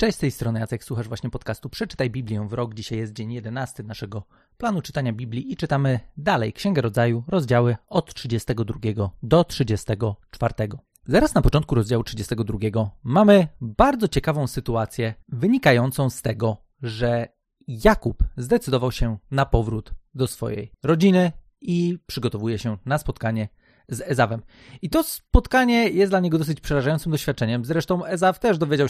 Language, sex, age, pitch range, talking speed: Polish, male, 30-49, 115-175 Hz, 145 wpm